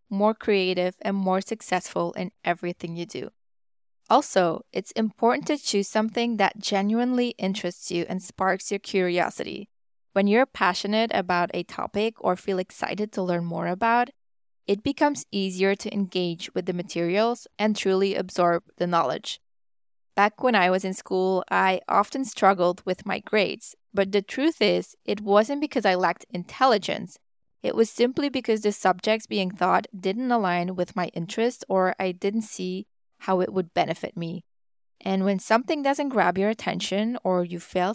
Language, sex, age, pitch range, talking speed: English, female, 20-39, 180-225 Hz, 165 wpm